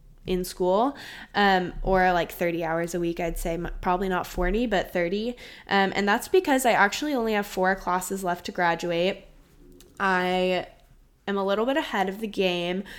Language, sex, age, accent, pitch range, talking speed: English, female, 10-29, American, 175-205 Hz, 175 wpm